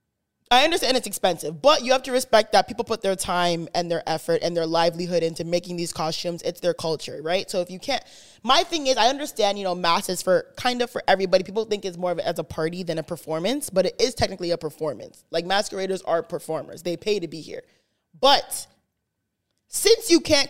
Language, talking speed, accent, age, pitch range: English, 225 wpm, American, 20-39, 180-245 Hz